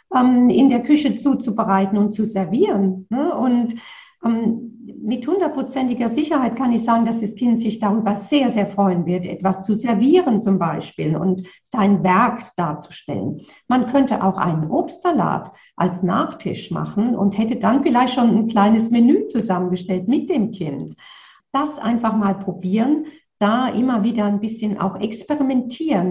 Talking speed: 145 wpm